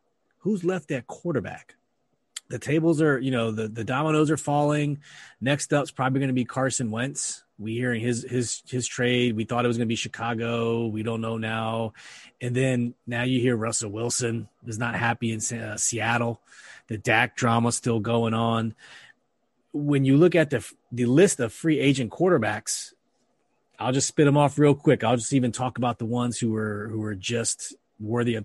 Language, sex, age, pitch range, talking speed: English, male, 30-49, 115-145 Hz, 190 wpm